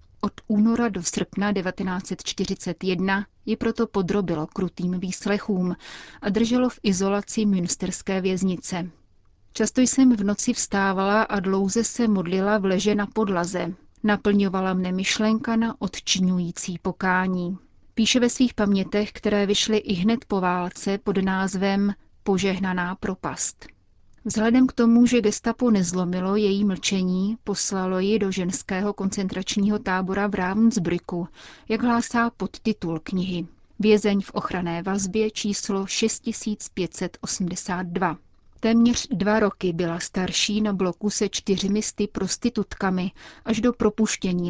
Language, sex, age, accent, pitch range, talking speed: Czech, female, 30-49, native, 185-215 Hz, 120 wpm